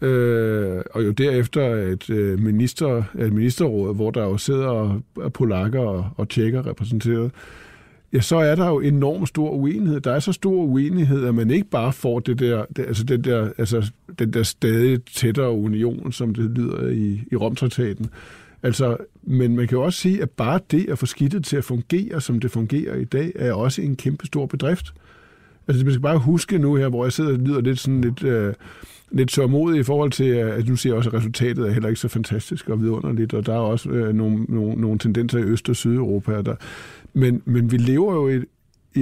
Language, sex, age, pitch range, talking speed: Danish, male, 50-69, 115-150 Hz, 205 wpm